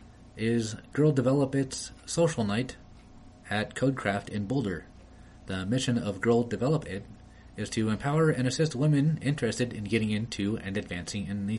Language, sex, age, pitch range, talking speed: English, male, 30-49, 95-125 Hz, 155 wpm